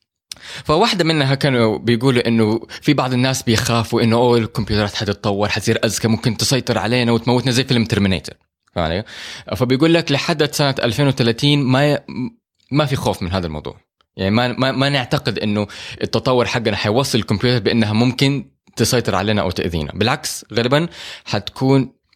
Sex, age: male, 20-39